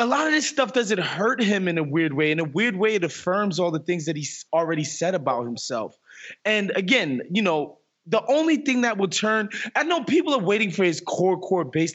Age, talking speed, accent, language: 20-39, 235 wpm, American, English